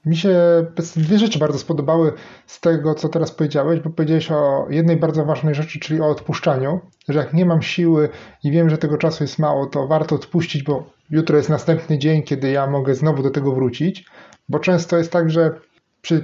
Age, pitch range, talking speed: 30-49, 150-180 Hz, 200 wpm